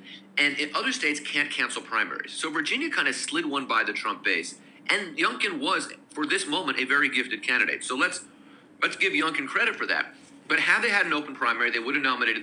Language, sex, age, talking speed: English, male, 40-59, 220 wpm